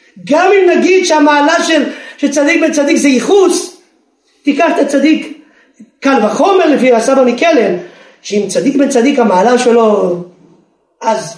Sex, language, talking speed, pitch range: male, Hebrew, 120 wpm, 180-285 Hz